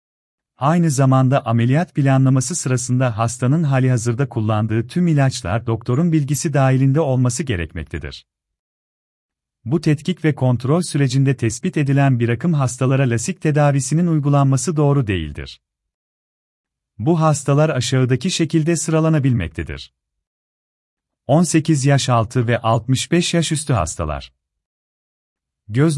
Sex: male